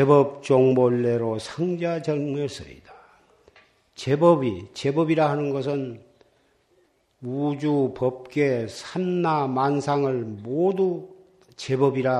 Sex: male